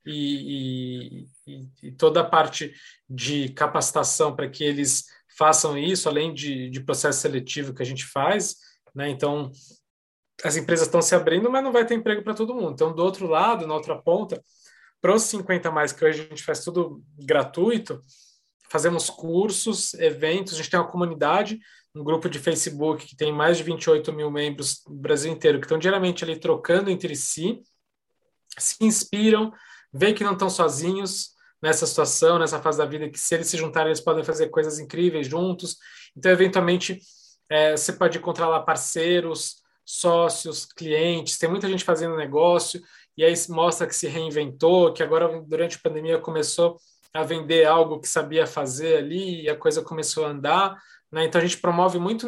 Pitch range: 150-180 Hz